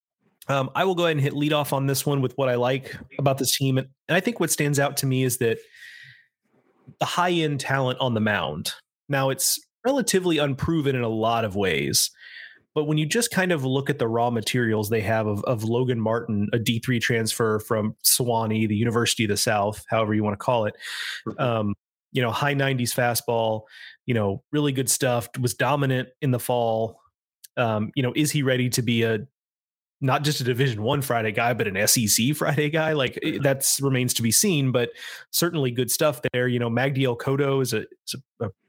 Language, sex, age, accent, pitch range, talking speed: English, male, 30-49, American, 115-140 Hz, 210 wpm